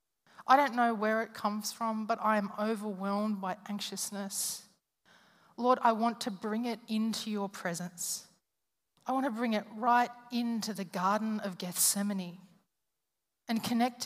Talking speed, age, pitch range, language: 150 wpm, 40-59, 210-260 Hz, English